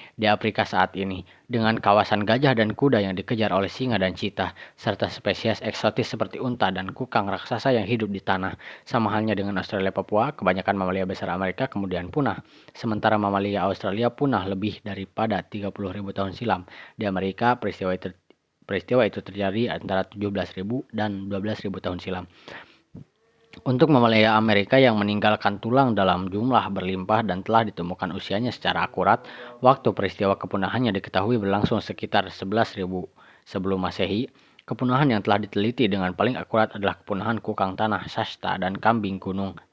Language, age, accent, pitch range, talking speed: Indonesian, 20-39, native, 95-110 Hz, 145 wpm